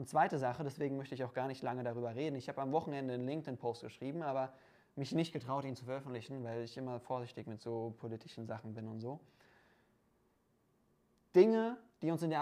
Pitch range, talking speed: 130-185 Hz, 205 wpm